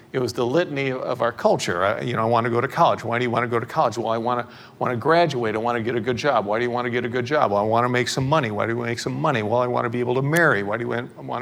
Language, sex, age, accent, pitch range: English, male, 50-69, American, 115-135 Hz